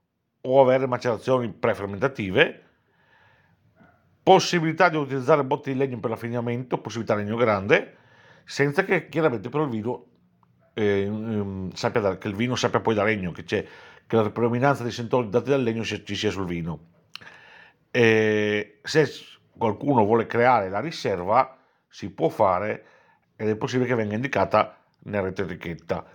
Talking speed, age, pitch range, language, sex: 155 wpm, 50-69, 105-145 Hz, Italian, male